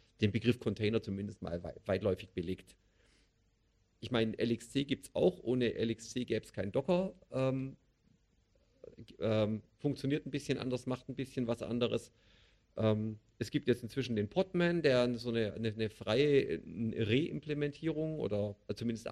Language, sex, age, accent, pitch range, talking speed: German, male, 50-69, German, 105-135 Hz, 145 wpm